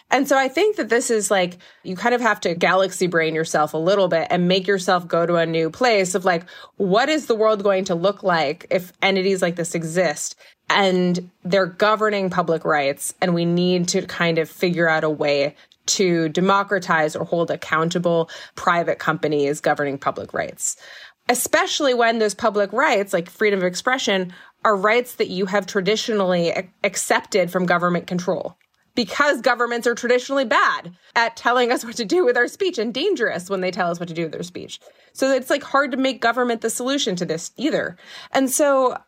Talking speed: 195 wpm